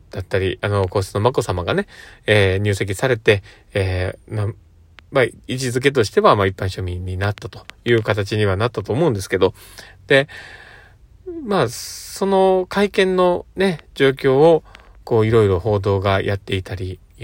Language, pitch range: Japanese, 95-135 Hz